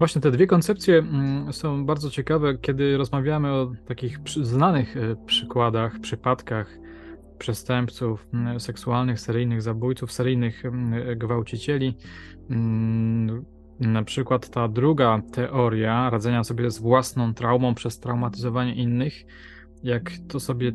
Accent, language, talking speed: native, Polish, 105 wpm